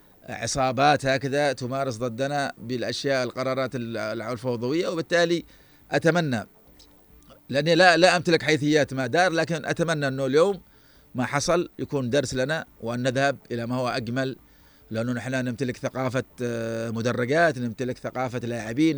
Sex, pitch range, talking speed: male, 125-145 Hz, 125 wpm